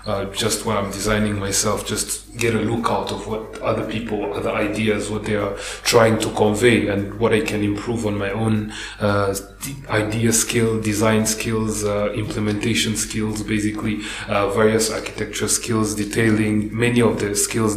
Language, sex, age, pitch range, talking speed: English, male, 30-49, 100-110 Hz, 165 wpm